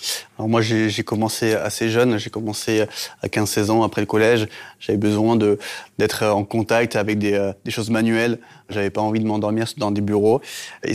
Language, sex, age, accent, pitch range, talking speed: French, male, 20-39, French, 105-115 Hz, 190 wpm